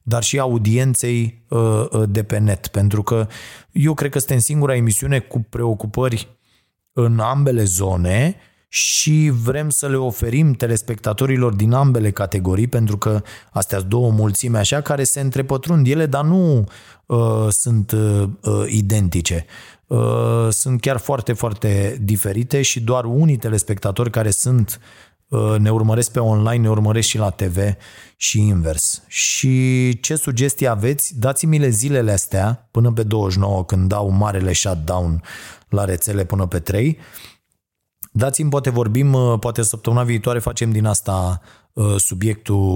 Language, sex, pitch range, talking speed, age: Romanian, male, 105-130 Hz, 140 wpm, 30-49